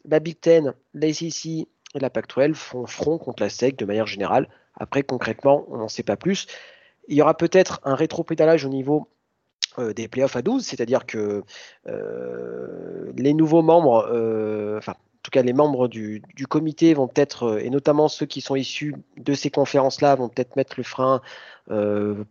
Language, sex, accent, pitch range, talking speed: French, male, French, 120-145 Hz, 185 wpm